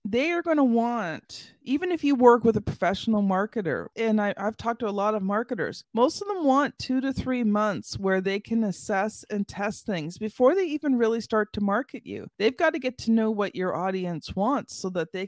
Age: 40-59